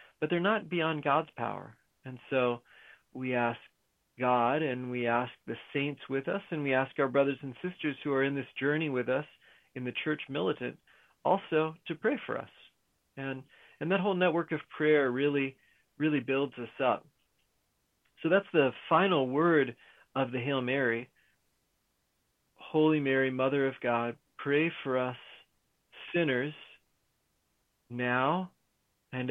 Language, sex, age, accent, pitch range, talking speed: English, male, 40-59, American, 120-150 Hz, 150 wpm